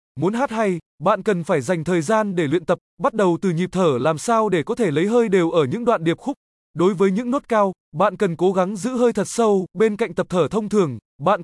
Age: 20-39